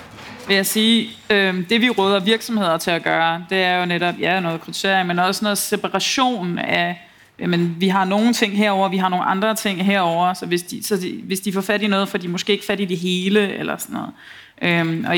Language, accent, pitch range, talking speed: Danish, native, 170-195 Hz, 230 wpm